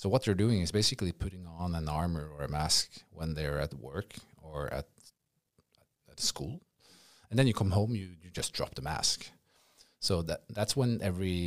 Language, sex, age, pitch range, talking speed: English, male, 30-49, 80-100 Hz, 195 wpm